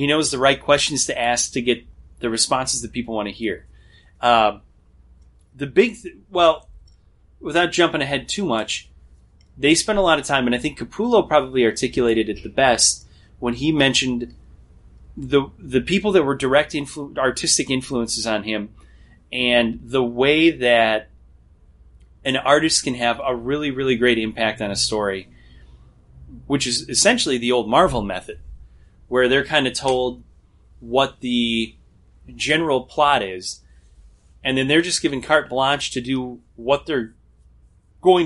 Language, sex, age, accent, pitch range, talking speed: English, male, 30-49, American, 90-135 Hz, 150 wpm